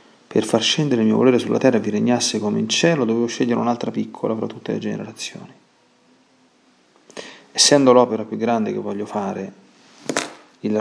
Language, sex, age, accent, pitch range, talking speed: Italian, male, 40-59, native, 110-125 Hz, 165 wpm